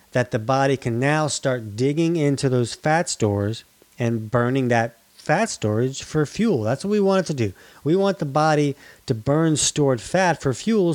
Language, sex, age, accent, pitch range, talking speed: English, male, 30-49, American, 120-160 Hz, 190 wpm